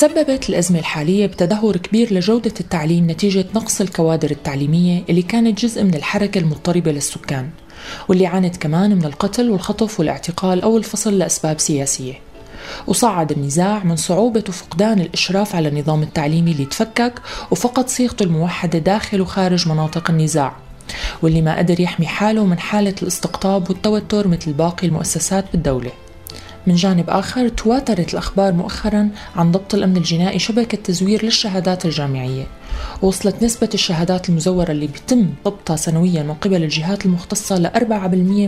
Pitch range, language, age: 165-205 Hz, Arabic, 30-49